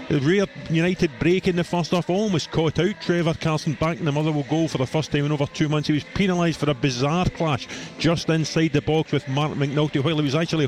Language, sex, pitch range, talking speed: English, male, 140-165 Hz, 240 wpm